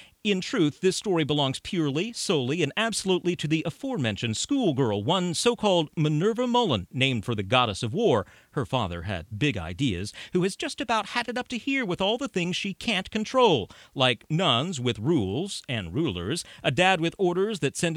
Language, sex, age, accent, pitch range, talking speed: English, male, 40-59, American, 125-185 Hz, 185 wpm